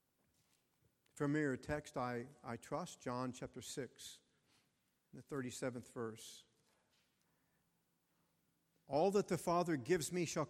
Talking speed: 105 wpm